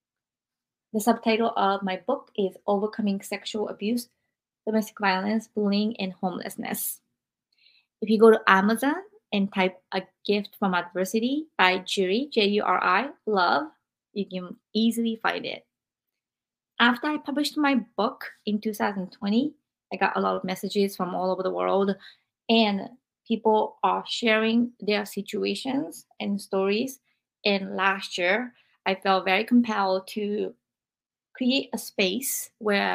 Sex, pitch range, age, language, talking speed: female, 195-245 Hz, 20-39, English, 135 wpm